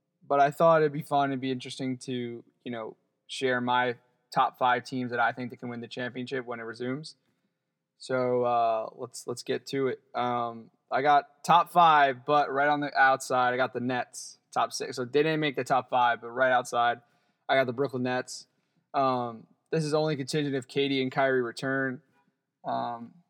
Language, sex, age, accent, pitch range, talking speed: English, male, 20-39, American, 125-140 Hz, 200 wpm